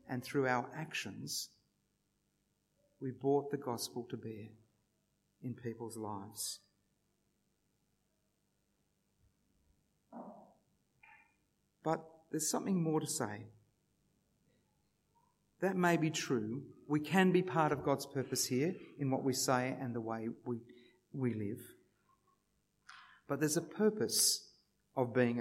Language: English